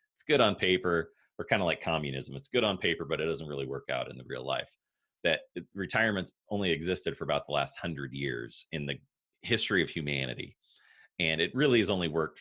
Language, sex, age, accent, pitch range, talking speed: English, male, 30-49, American, 75-95 Hz, 215 wpm